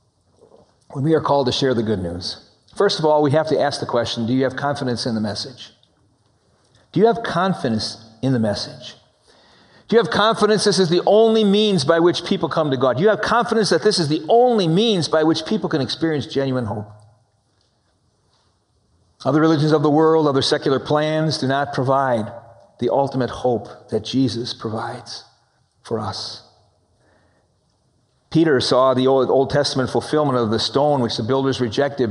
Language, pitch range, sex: English, 115-160 Hz, male